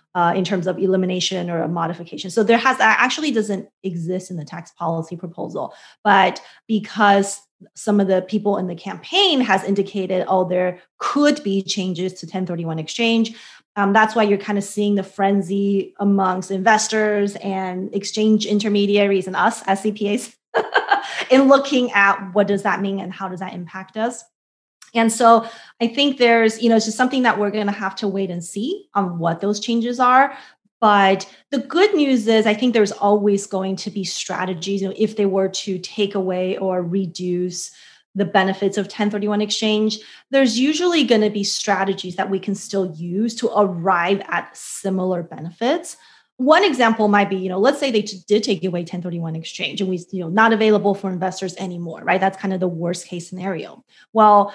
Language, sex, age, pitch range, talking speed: English, female, 20-39, 190-225 Hz, 185 wpm